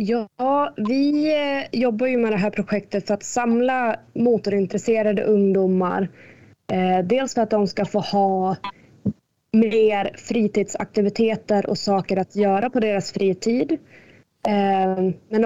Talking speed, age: 115 wpm, 20-39